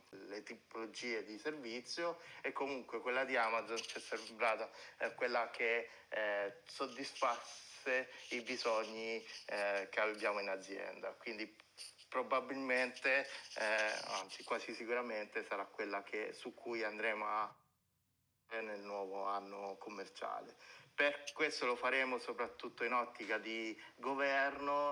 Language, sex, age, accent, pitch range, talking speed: Italian, male, 30-49, native, 105-125 Hz, 120 wpm